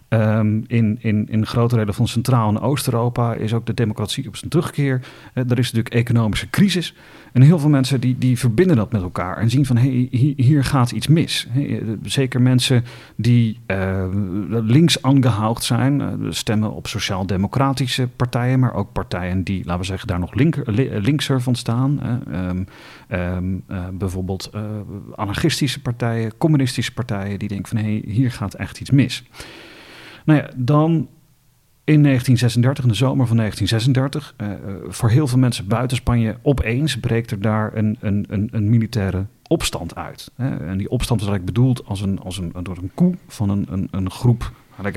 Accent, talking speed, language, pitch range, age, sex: Dutch, 170 wpm, Dutch, 100-130 Hz, 40-59, male